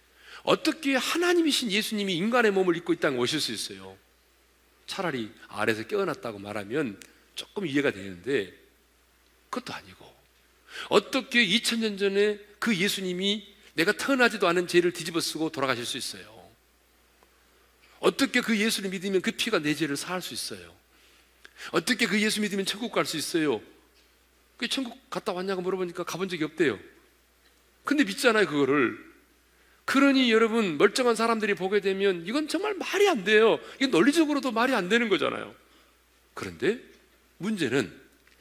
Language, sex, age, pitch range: Korean, male, 40-59, 195-270 Hz